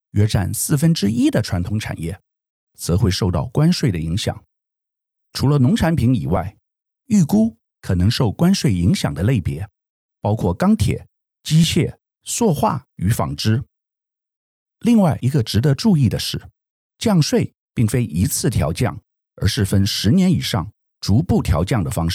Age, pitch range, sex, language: 50-69, 95-155 Hz, male, Chinese